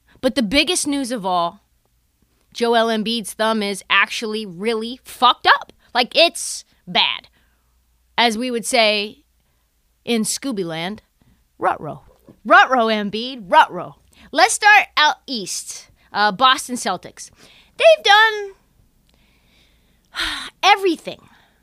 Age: 20-39